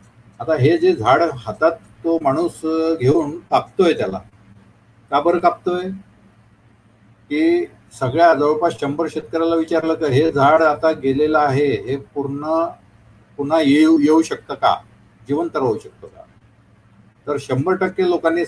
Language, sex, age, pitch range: Marathi, male, 50-69, 115-165 Hz